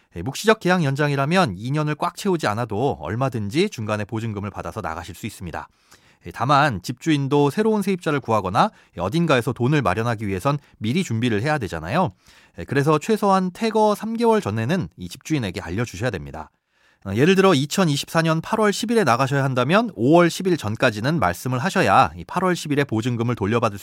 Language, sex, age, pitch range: Korean, male, 30-49, 110-170 Hz